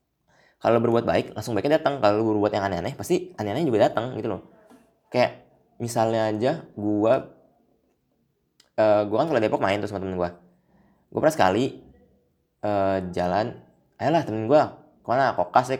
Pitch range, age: 90-110 Hz, 20-39